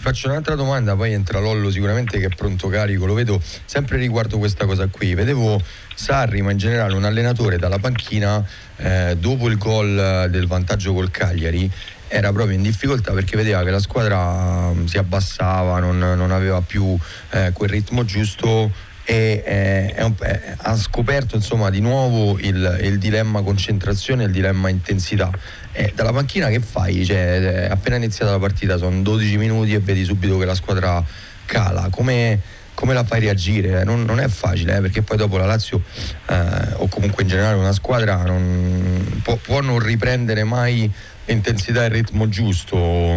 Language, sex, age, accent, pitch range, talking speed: Italian, male, 30-49, native, 95-110 Hz, 175 wpm